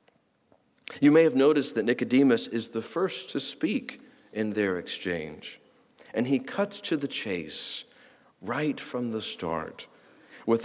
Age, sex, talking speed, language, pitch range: 50-69, male, 140 wpm, English, 115-155 Hz